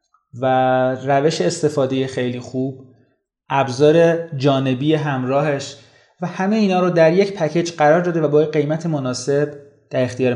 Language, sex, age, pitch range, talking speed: Persian, male, 30-49, 130-160 Hz, 135 wpm